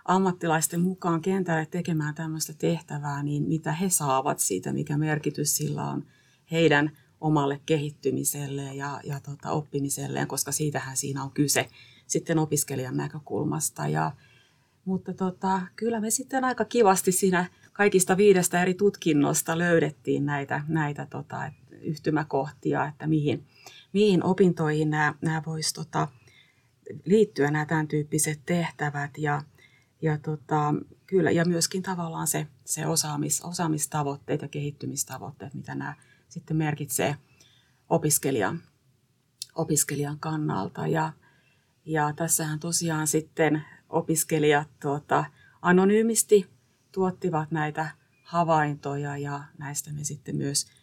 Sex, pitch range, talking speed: female, 140-165 Hz, 105 wpm